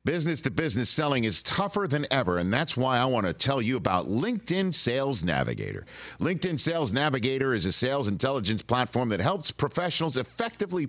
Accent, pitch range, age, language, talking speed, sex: American, 115-170 Hz, 50-69, English, 165 wpm, male